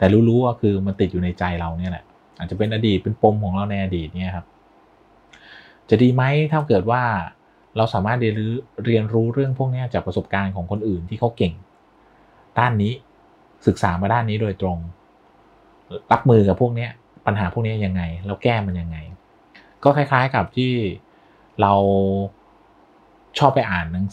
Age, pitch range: 30-49, 95-115 Hz